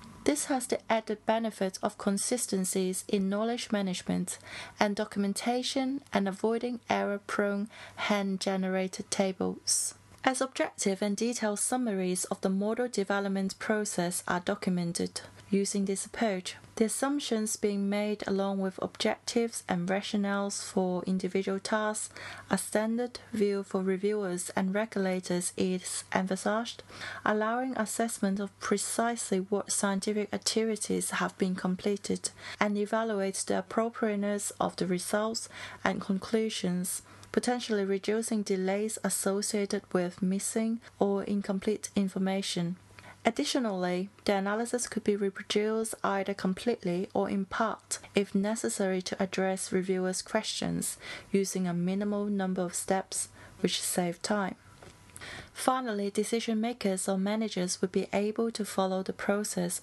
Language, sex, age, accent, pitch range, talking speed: English, female, 30-49, British, 190-215 Hz, 120 wpm